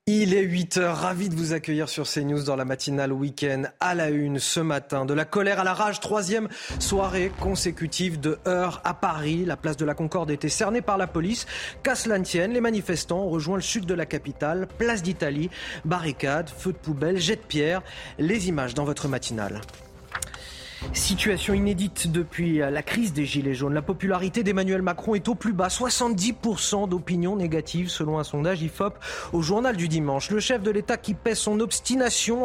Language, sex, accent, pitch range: French, male, French, 150-205 Hz